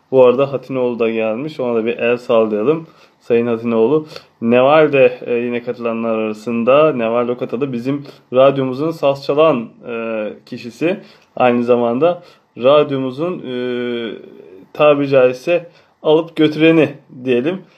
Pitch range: 125-165 Hz